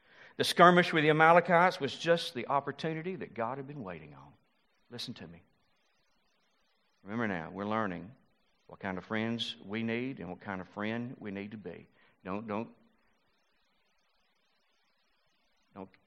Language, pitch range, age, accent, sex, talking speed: English, 105-140 Hz, 50-69, American, male, 150 wpm